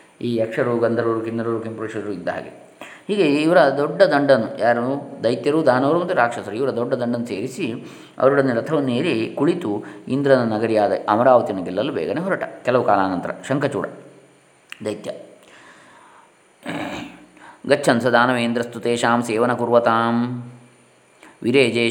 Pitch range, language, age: 115-135 Hz, Kannada, 20-39